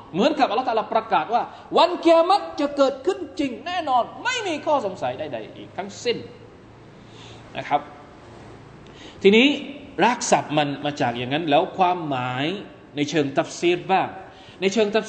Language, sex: Thai, male